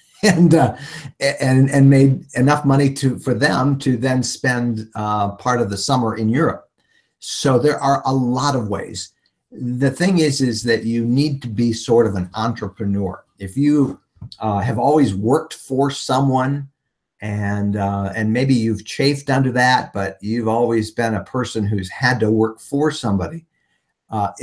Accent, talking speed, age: American, 170 wpm, 50-69